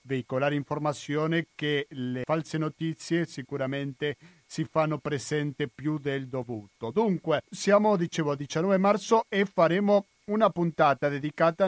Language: Italian